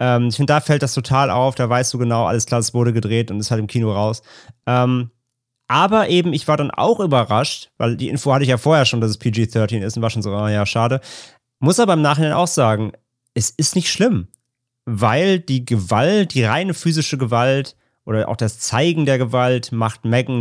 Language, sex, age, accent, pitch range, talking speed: German, male, 30-49, German, 110-130 Hz, 215 wpm